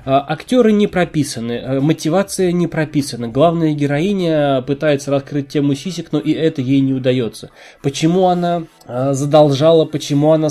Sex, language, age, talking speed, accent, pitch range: male, Russian, 20-39, 130 wpm, native, 140-185 Hz